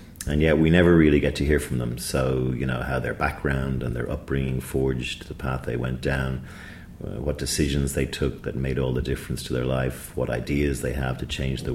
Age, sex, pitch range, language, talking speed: 40-59, male, 65-80 Hz, English, 230 wpm